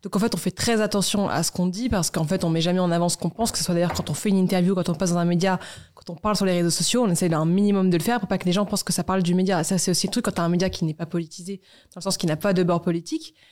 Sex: female